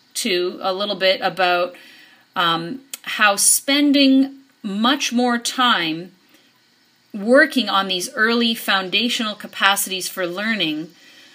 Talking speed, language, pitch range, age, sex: 100 wpm, English, 185-235 Hz, 40-59, female